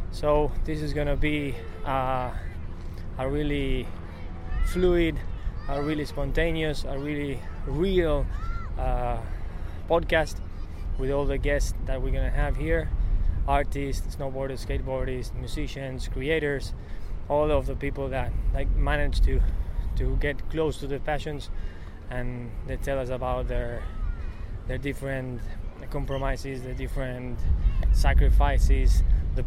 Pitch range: 85-140 Hz